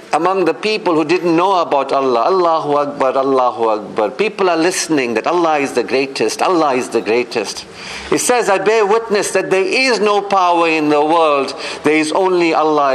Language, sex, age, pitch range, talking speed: English, male, 50-69, 150-215 Hz, 190 wpm